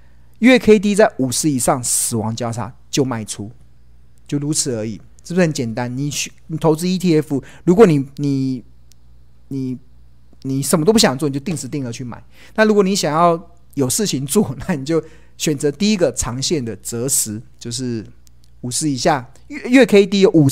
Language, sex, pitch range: Chinese, male, 115-160 Hz